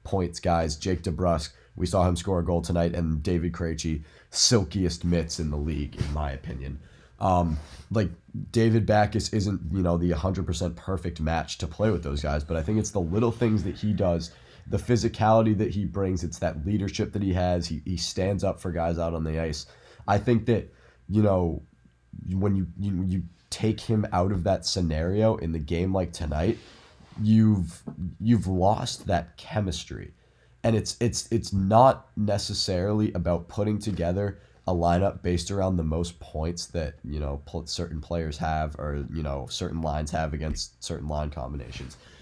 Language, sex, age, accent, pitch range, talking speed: English, male, 20-39, American, 80-100 Hz, 180 wpm